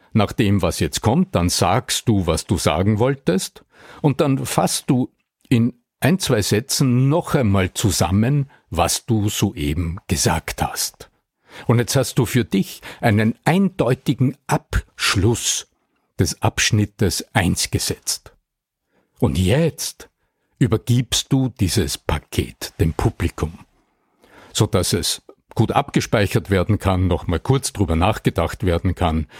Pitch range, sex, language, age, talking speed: 100-135 Hz, male, German, 60-79, 125 wpm